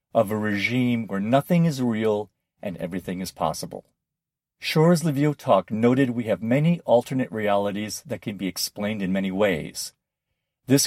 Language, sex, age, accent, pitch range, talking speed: English, male, 50-69, American, 105-145 Hz, 155 wpm